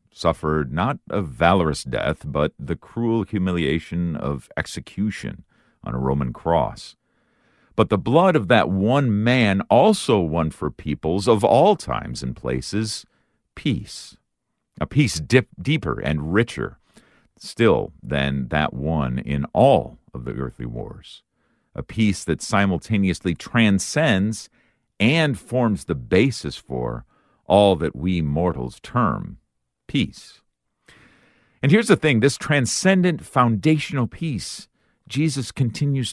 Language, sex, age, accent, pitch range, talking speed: English, male, 50-69, American, 75-115 Hz, 125 wpm